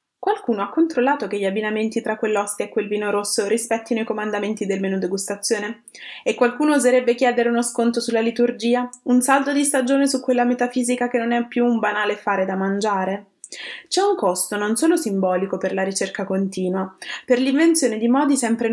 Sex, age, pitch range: female, 20-39, 205-270 Hz